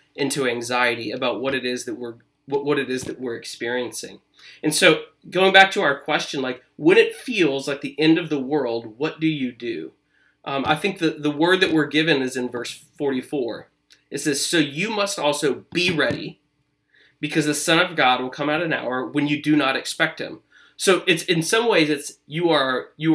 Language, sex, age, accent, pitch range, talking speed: English, male, 30-49, American, 140-170 Hz, 210 wpm